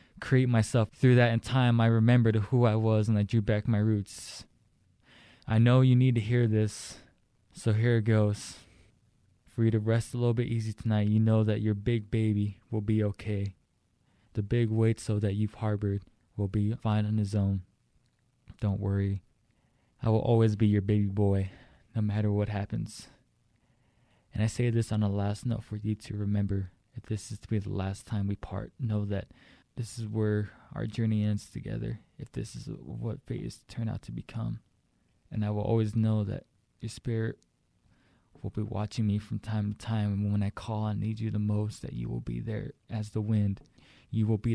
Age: 20-39